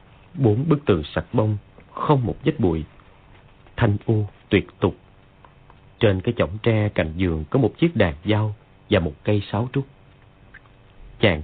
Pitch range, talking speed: 95-120 Hz, 155 wpm